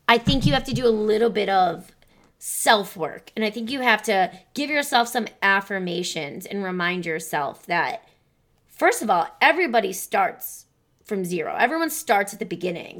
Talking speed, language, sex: 170 wpm, English, female